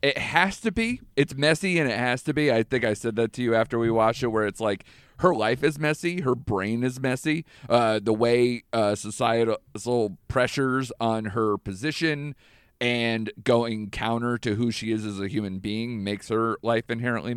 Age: 40-59